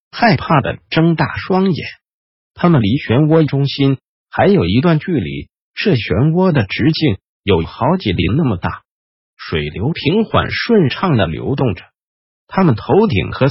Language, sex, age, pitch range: Chinese, male, 50-69, 105-170 Hz